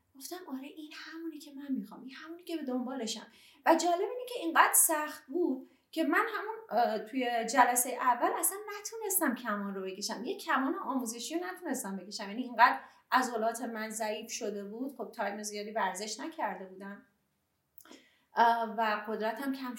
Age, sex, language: 30-49, female, Persian